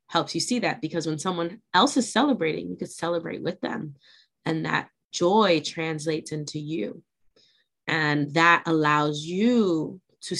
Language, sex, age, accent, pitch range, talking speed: English, female, 20-39, American, 155-190 Hz, 150 wpm